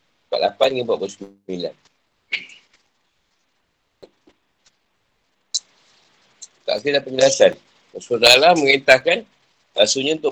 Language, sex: Malay, male